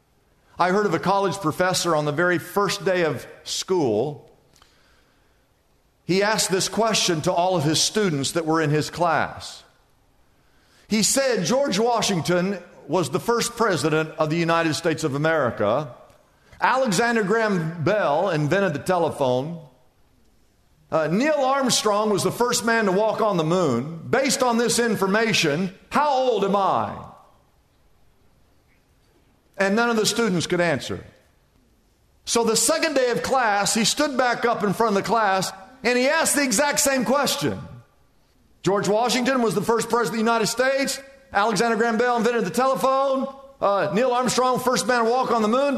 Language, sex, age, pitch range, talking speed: English, male, 50-69, 175-245 Hz, 160 wpm